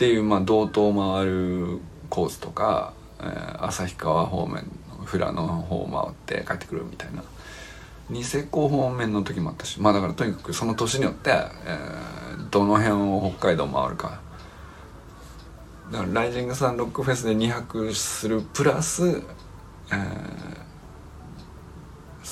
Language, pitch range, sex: Japanese, 95-145 Hz, male